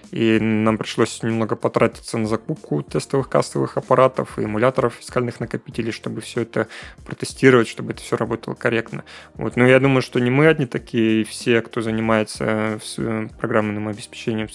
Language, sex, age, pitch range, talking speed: Russian, male, 20-39, 110-125 Hz, 155 wpm